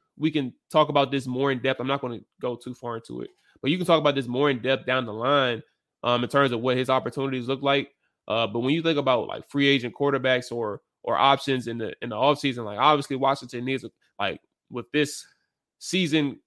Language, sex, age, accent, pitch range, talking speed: English, male, 20-39, American, 130-145 Hz, 235 wpm